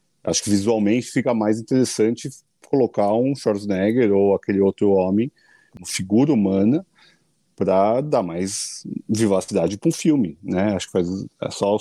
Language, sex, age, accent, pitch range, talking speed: Portuguese, male, 40-59, Brazilian, 95-125 Hz, 150 wpm